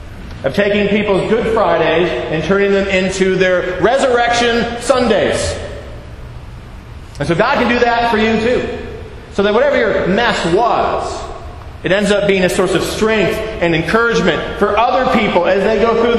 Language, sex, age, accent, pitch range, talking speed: English, male, 40-59, American, 150-225 Hz, 165 wpm